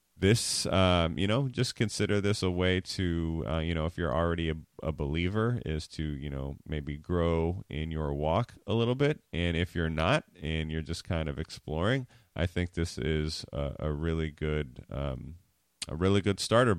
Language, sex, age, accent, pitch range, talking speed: English, male, 30-49, American, 80-100 Hz, 195 wpm